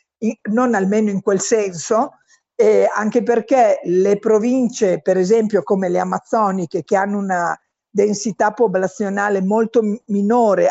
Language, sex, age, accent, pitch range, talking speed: Italian, female, 50-69, native, 195-240 Hz, 135 wpm